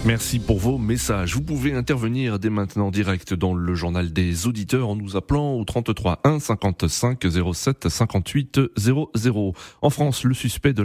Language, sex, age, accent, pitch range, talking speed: French, male, 30-49, French, 95-125 Hz, 165 wpm